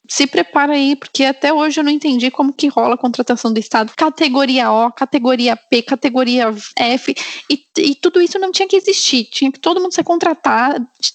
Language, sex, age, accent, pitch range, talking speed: Portuguese, female, 10-29, Brazilian, 235-290 Hz, 195 wpm